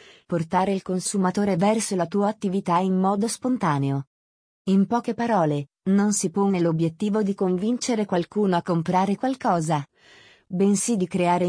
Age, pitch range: 30-49, 180-220 Hz